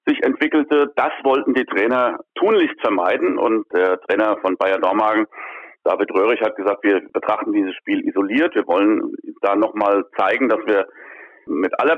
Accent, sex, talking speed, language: German, male, 165 wpm, German